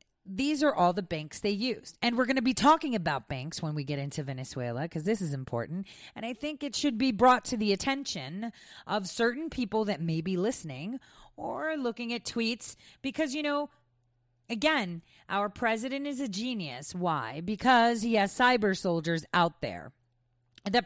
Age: 40-59